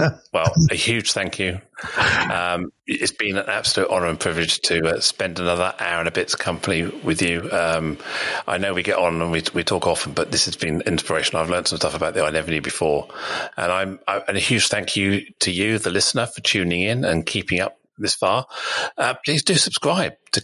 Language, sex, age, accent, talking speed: English, male, 40-59, British, 220 wpm